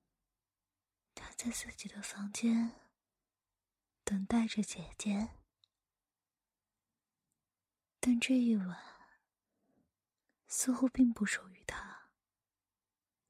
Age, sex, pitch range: 20-39, female, 180-225 Hz